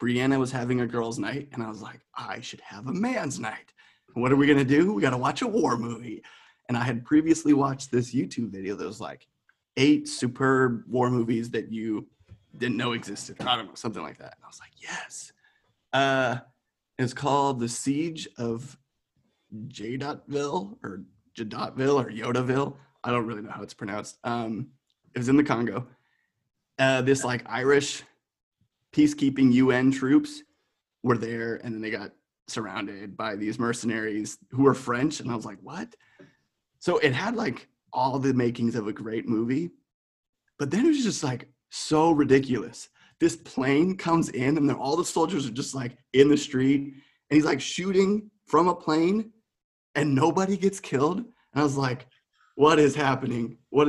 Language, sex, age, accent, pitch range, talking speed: English, male, 30-49, American, 120-145 Hz, 180 wpm